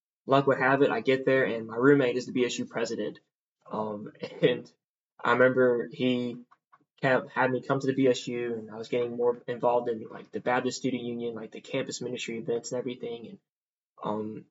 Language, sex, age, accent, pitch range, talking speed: English, male, 20-39, American, 120-135 Hz, 190 wpm